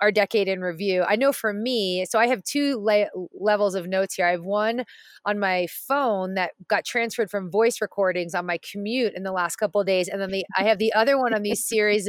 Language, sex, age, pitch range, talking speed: English, female, 30-49, 190-245 Hz, 245 wpm